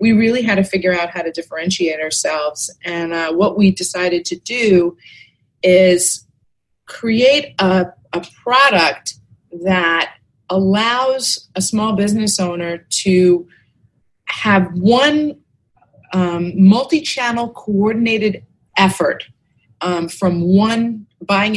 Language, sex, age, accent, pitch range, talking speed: English, female, 30-49, American, 170-205 Hz, 110 wpm